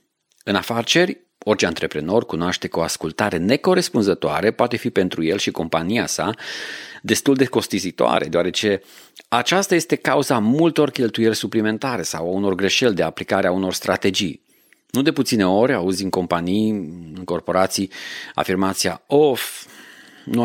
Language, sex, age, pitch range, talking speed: Romanian, male, 40-59, 90-130 Hz, 140 wpm